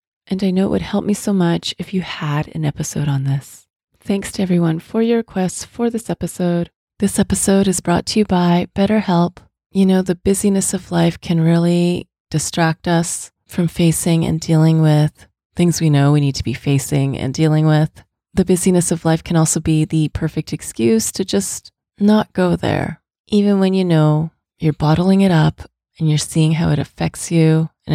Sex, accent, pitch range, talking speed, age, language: female, American, 155-185 Hz, 195 wpm, 30-49, English